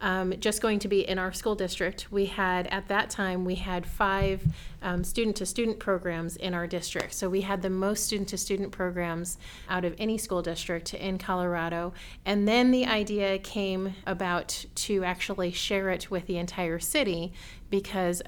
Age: 30-49